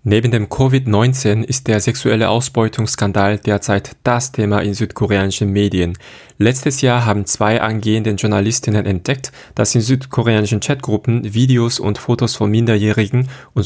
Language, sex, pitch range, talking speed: German, male, 105-125 Hz, 130 wpm